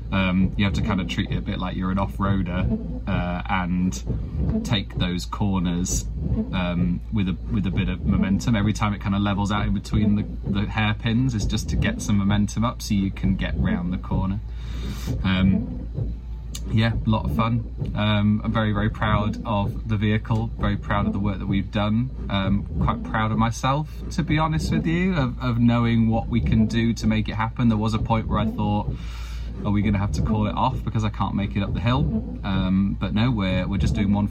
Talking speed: 220 wpm